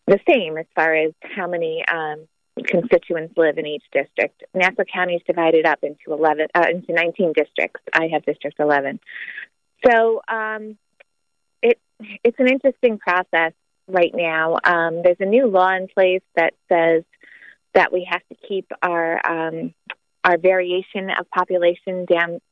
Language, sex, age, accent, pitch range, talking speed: English, female, 30-49, American, 165-220 Hz, 155 wpm